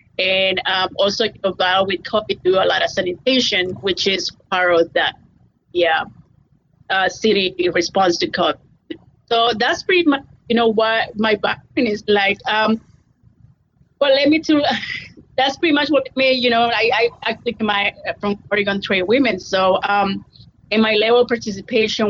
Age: 30-49